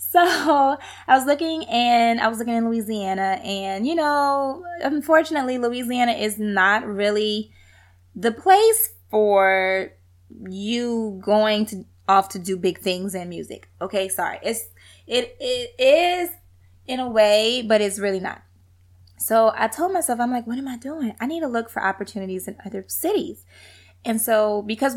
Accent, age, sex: American, 20-39, female